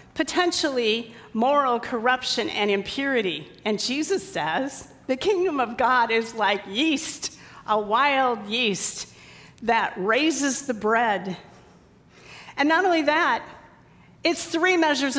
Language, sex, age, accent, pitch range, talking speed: English, female, 40-59, American, 230-310 Hz, 115 wpm